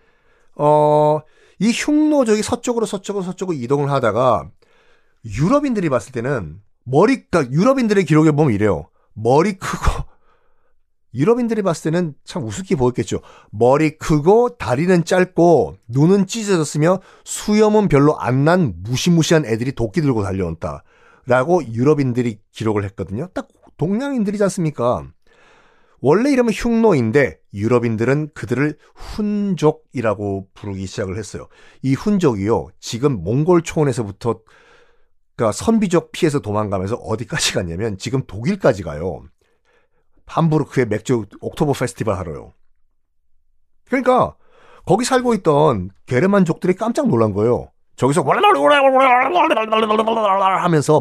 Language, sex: Korean, male